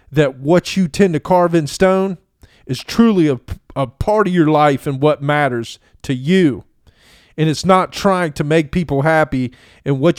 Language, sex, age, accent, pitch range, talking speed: English, male, 40-59, American, 135-185 Hz, 185 wpm